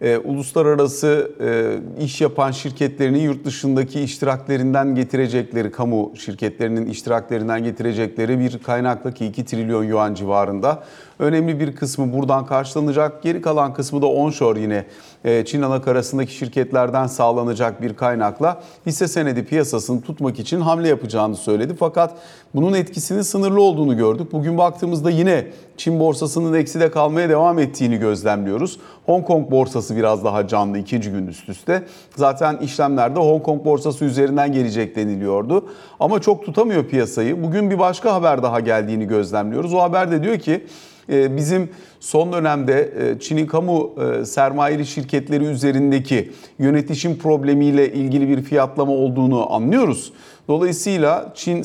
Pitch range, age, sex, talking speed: 125-165 Hz, 40-59, male, 135 wpm